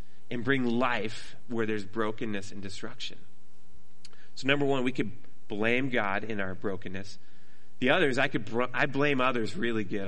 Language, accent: English, American